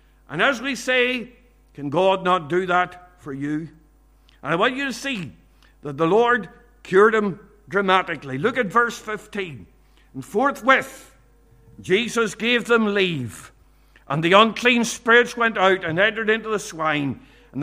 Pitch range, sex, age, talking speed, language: 170-225 Hz, male, 60-79, 155 wpm, English